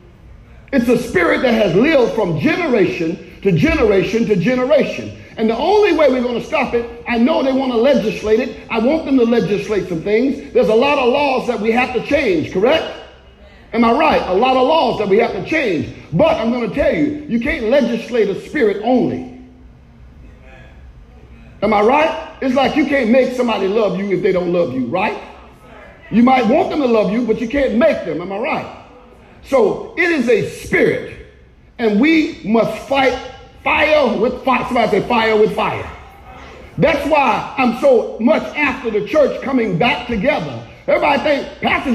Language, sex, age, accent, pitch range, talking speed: English, male, 50-69, American, 225-300 Hz, 190 wpm